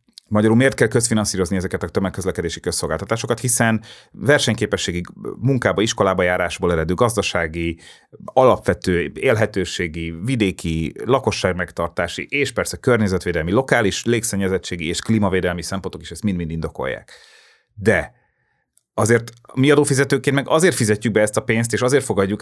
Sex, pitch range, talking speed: male, 90-120 Hz, 120 wpm